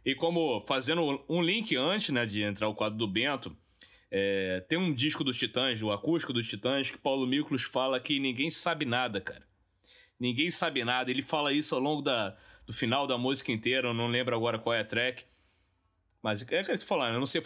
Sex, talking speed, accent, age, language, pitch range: male, 210 wpm, Brazilian, 20-39, Portuguese, 120-155 Hz